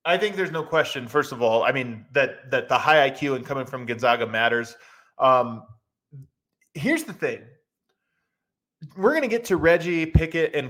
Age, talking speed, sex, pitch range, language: 30-49, 180 wpm, male, 130-175 Hz, English